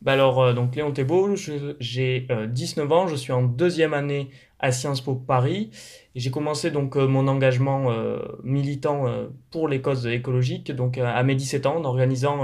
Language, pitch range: French, 125-150 Hz